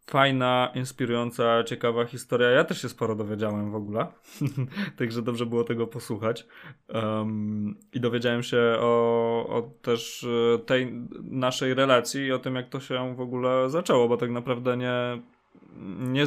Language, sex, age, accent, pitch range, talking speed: Polish, male, 20-39, native, 115-125 Hz, 150 wpm